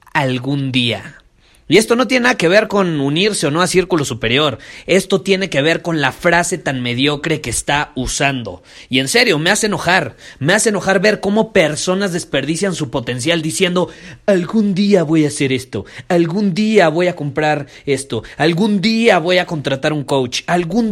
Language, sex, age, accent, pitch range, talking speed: Spanish, male, 30-49, Mexican, 130-185 Hz, 185 wpm